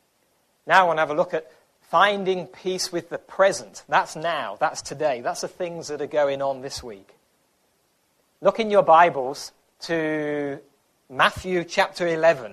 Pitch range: 135-185 Hz